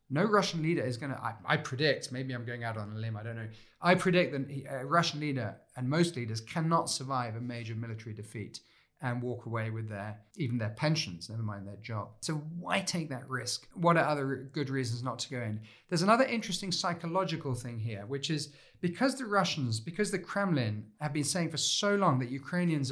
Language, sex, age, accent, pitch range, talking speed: English, male, 40-59, British, 110-150 Hz, 215 wpm